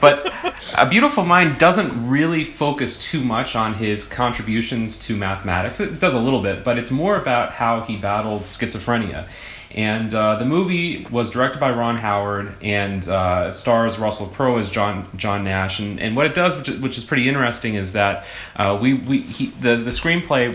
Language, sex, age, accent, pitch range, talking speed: English, male, 30-49, American, 100-125 Hz, 185 wpm